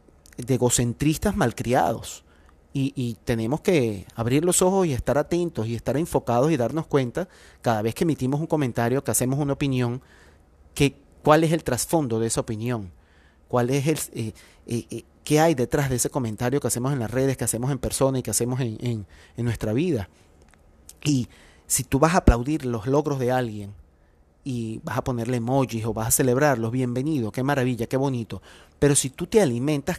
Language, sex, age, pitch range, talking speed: Spanish, male, 30-49, 115-145 Hz, 190 wpm